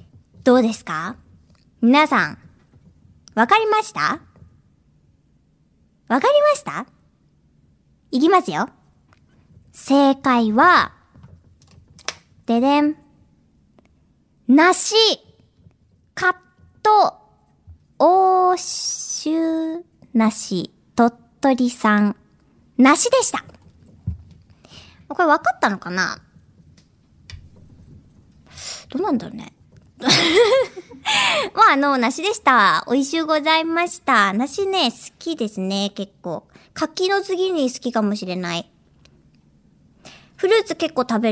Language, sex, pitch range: Japanese, male, 235-370 Hz